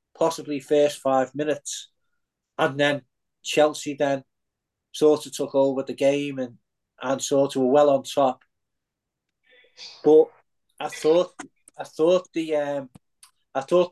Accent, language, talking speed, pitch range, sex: British, English, 135 wpm, 135-155 Hz, male